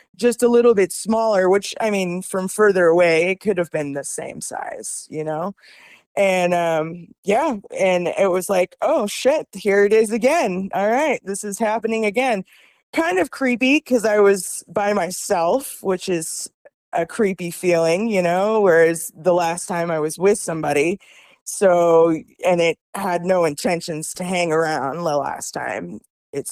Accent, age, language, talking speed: American, 20-39, English, 170 wpm